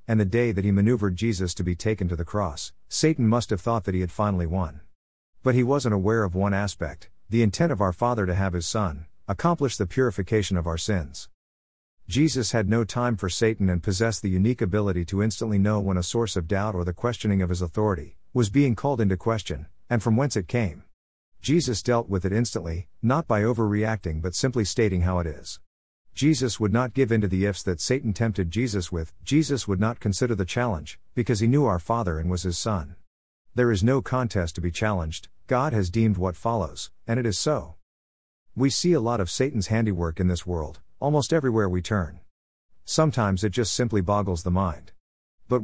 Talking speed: 210 wpm